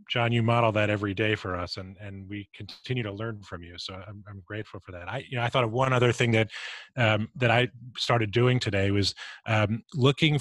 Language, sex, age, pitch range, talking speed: English, male, 30-49, 105-125 Hz, 235 wpm